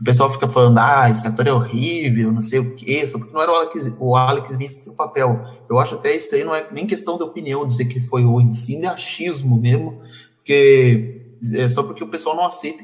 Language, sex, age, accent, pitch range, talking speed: Portuguese, male, 20-39, Brazilian, 120-145 Hz, 250 wpm